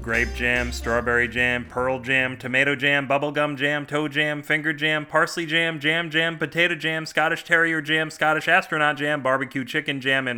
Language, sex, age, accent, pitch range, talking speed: English, male, 30-49, American, 115-150 Hz, 175 wpm